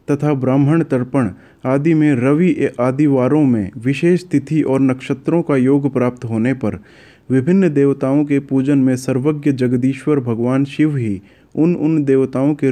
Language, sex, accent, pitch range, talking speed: Hindi, male, native, 120-145 Hz, 145 wpm